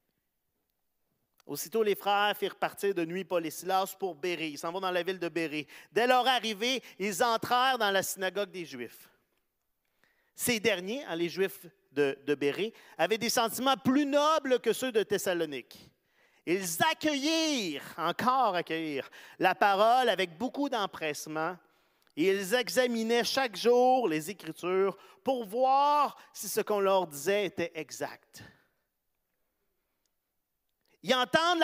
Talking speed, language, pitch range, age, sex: 135 wpm, French, 190-270 Hz, 40-59, male